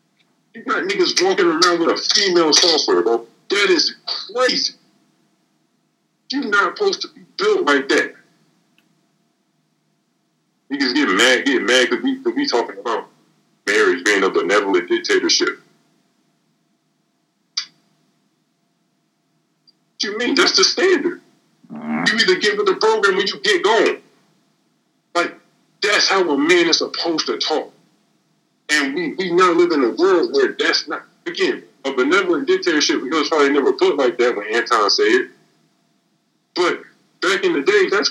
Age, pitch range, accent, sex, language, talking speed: 50-69, 315-390 Hz, American, male, English, 145 wpm